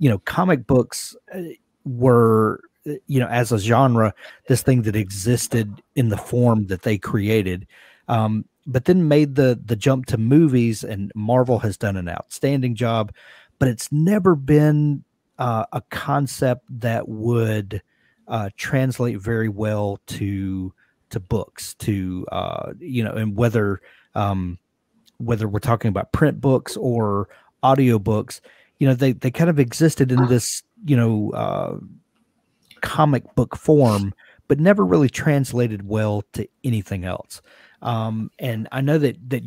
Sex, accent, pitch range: male, American, 110-130 Hz